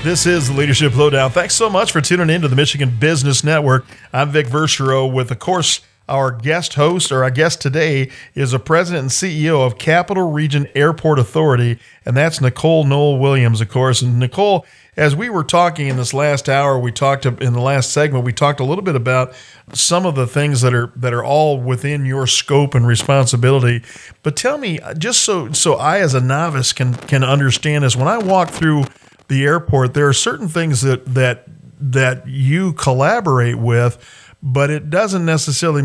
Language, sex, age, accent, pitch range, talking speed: English, male, 40-59, American, 125-150 Hz, 195 wpm